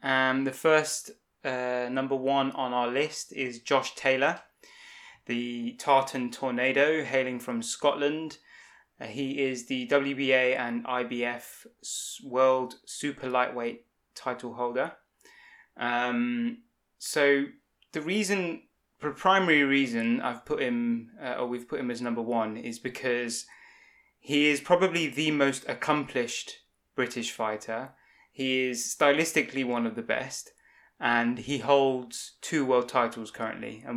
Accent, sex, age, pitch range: British, male, 20-39, 120-145 Hz